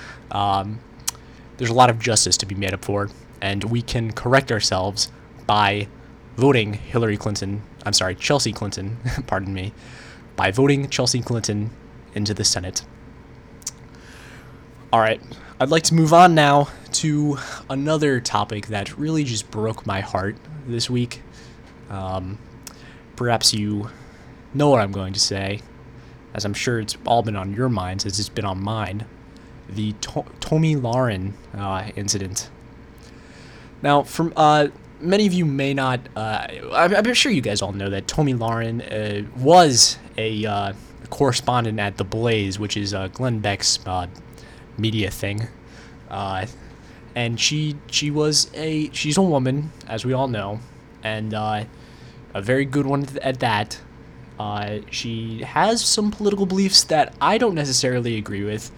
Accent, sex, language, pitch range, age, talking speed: American, male, English, 105-140 Hz, 20-39, 150 wpm